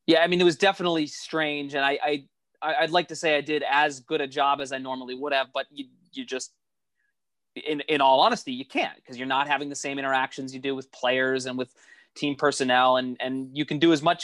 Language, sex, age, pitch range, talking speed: English, male, 30-49, 130-165 Hz, 250 wpm